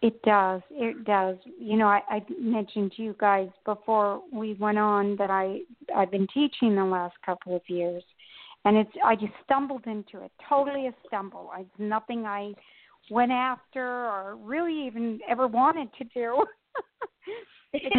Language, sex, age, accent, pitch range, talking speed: English, female, 50-69, American, 195-235 Hz, 165 wpm